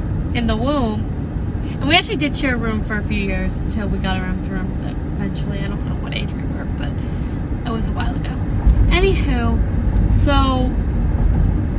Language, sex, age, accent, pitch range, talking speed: English, female, 10-29, American, 80-95 Hz, 190 wpm